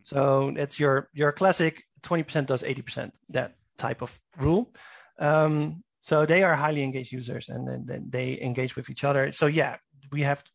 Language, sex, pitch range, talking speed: English, male, 135-160 Hz, 175 wpm